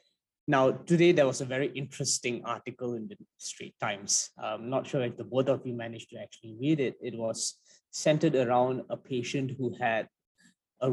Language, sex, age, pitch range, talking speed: English, male, 20-39, 120-145 Hz, 185 wpm